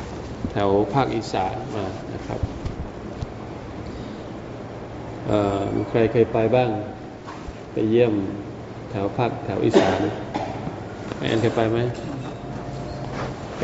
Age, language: 20-39, Thai